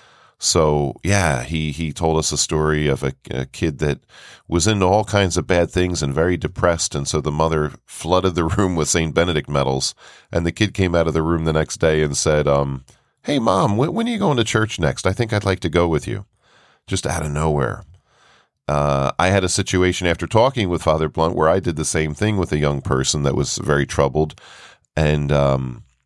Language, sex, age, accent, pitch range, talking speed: English, male, 10-29, American, 70-85 Hz, 220 wpm